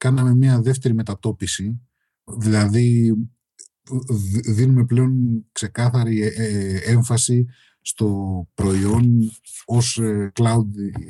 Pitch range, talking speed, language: 100-120 Hz, 70 wpm, Greek